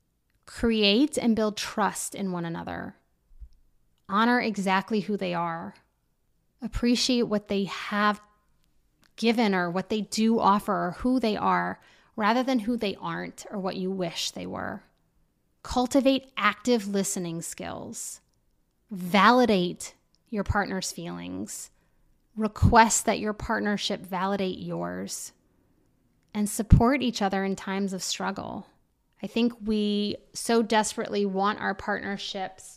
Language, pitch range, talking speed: English, 185-220 Hz, 125 wpm